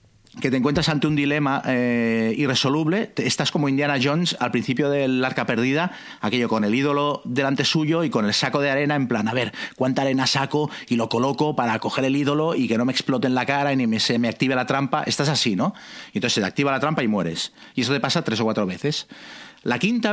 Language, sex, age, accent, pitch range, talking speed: Spanish, male, 40-59, Spanish, 120-155 Hz, 235 wpm